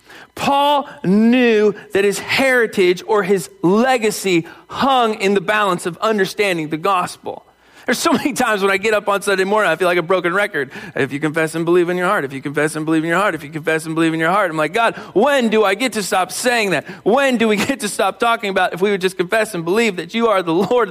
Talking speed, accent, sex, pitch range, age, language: 255 wpm, American, male, 165-215 Hz, 40-59, English